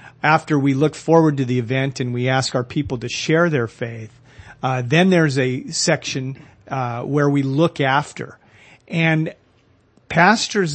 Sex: male